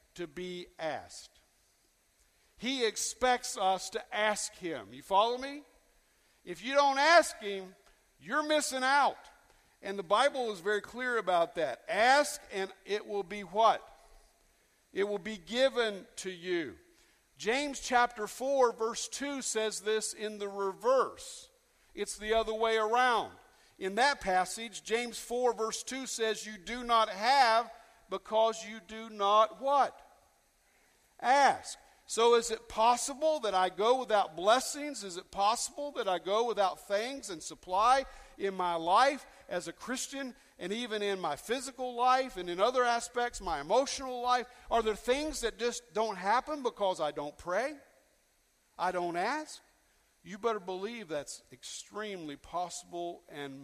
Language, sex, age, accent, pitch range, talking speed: English, male, 50-69, American, 190-255 Hz, 150 wpm